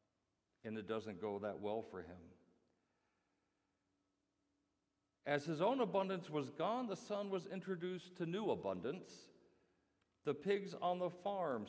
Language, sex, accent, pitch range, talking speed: English, male, American, 120-165 Hz, 135 wpm